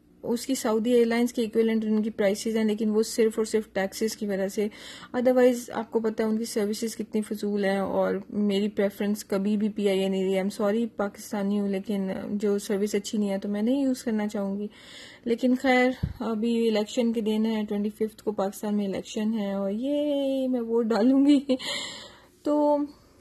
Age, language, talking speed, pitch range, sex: 20-39, Urdu, 210 wpm, 200-230 Hz, female